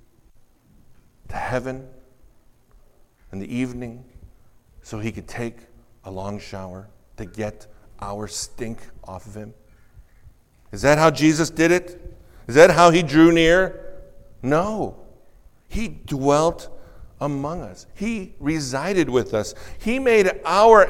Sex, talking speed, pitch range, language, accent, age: male, 125 wpm, 110-160 Hz, English, American, 50-69